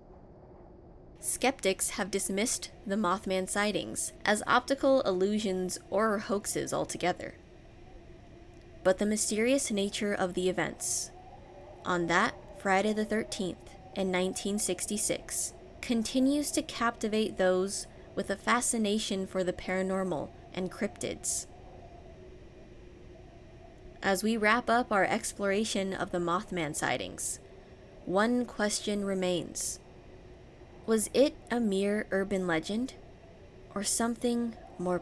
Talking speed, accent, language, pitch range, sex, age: 105 wpm, American, English, 185-220 Hz, female, 20-39